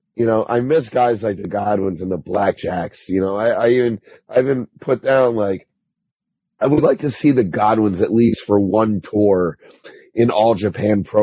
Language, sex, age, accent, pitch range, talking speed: English, male, 30-49, American, 105-125 Hz, 200 wpm